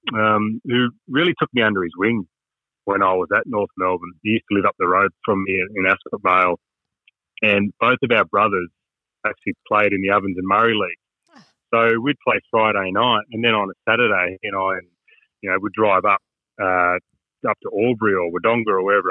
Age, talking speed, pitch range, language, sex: 30-49, 205 wpm, 105-130 Hz, English, male